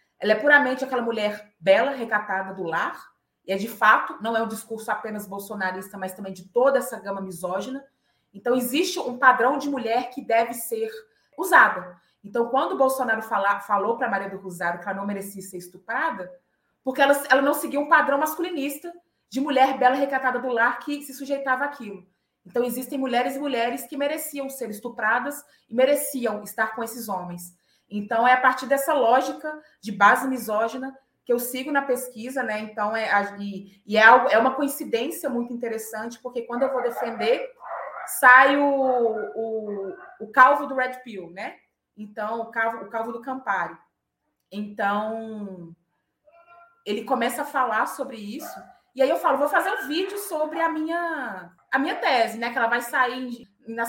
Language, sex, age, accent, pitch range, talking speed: Portuguese, female, 20-39, Brazilian, 210-275 Hz, 175 wpm